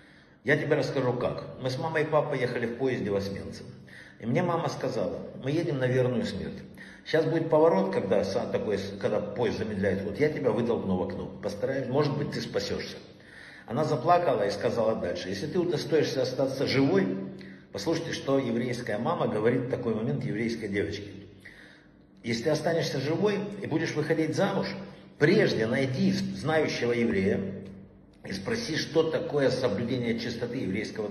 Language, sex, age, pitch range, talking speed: Russian, male, 50-69, 110-155 Hz, 155 wpm